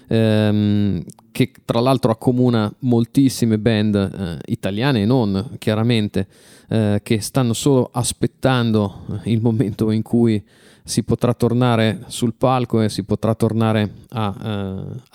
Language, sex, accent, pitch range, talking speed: Italian, male, native, 110-125 Hz, 125 wpm